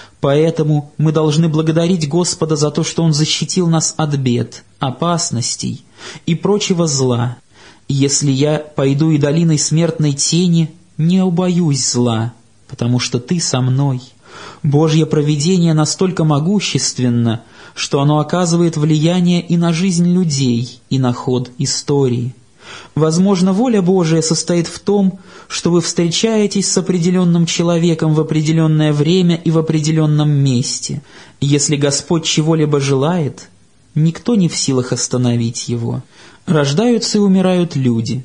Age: 20-39